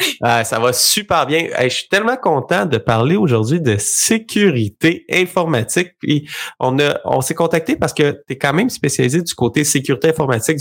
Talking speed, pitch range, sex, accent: 175 wpm, 120-165 Hz, male, Canadian